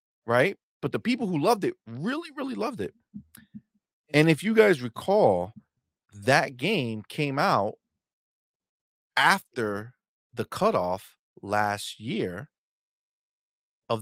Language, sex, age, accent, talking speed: English, male, 30-49, American, 110 wpm